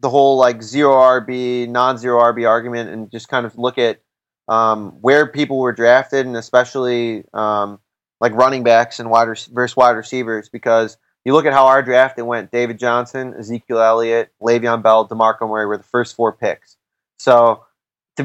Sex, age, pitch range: male, 20-39, 110-130 Hz